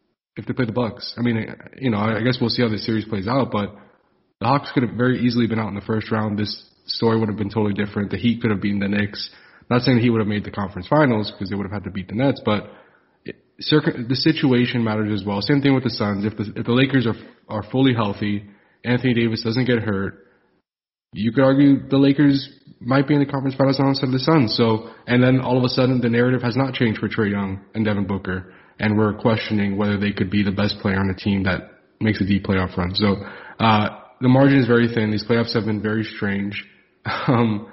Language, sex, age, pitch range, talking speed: English, male, 20-39, 105-125 Hz, 250 wpm